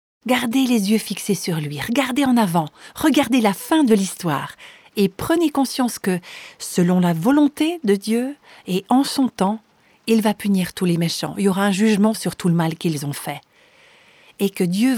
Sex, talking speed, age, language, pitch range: female, 190 wpm, 50-69, French, 180-250 Hz